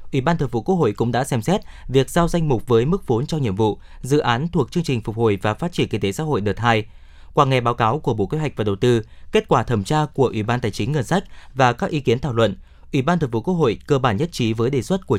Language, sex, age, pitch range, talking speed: Vietnamese, male, 20-39, 110-150 Hz, 310 wpm